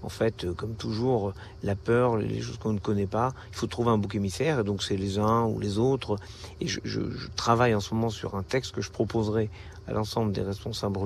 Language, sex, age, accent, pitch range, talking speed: French, male, 50-69, French, 100-140 Hz, 240 wpm